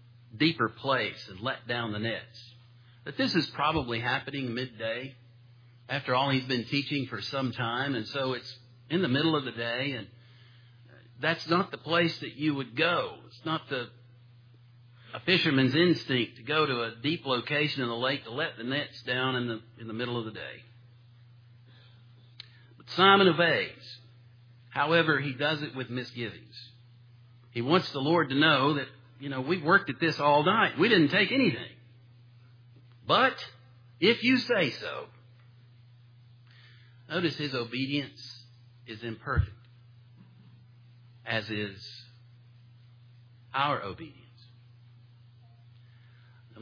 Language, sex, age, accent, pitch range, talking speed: English, male, 50-69, American, 120-135 Hz, 140 wpm